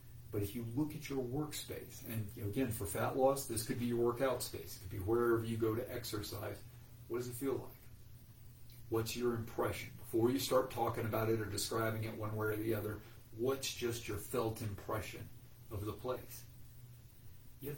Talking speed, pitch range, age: 190 wpm, 105-120 Hz, 40-59